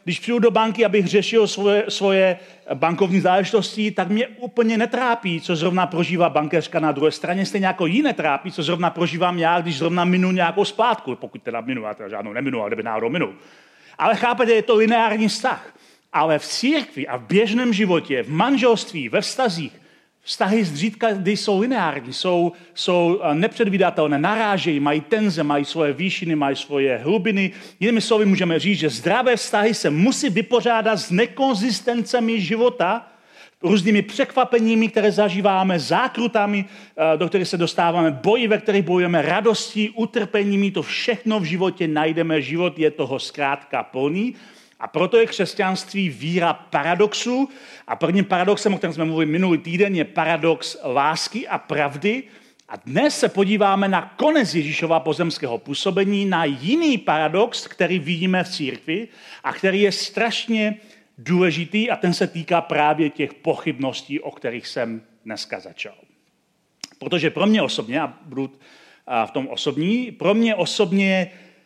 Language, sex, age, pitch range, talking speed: Czech, male, 40-59, 165-220 Hz, 150 wpm